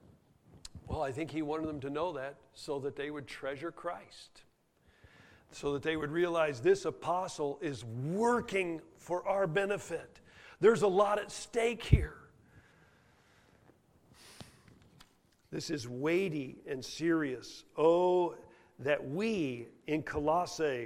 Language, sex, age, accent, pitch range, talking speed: English, male, 50-69, American, 135-165 Hz, 125 wpm